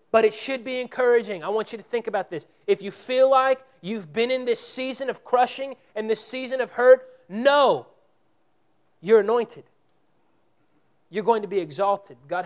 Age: 30-49